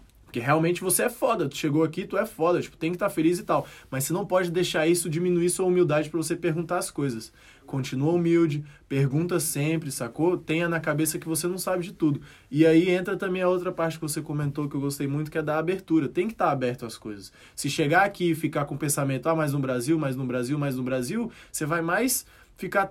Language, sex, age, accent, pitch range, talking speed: Portuguese, male, 20-39, Brazilian, 140-175 Hz, 245 wpm